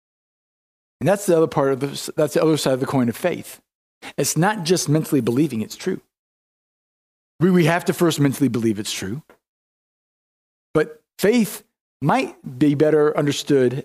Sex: male